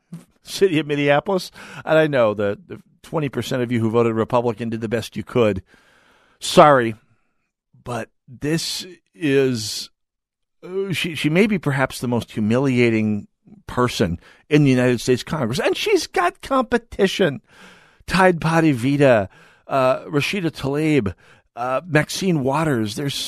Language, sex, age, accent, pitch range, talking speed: English, male, 50-69, American, 110-155 Hz, 135 wpm